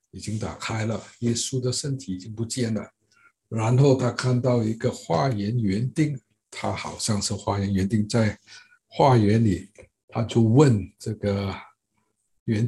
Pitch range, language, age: 100-135 Hz, Chinese, 60-79